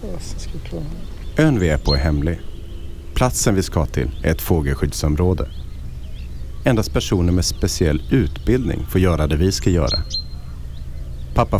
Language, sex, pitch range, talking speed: Swedish, male, 75-110 Hz, 130 wpm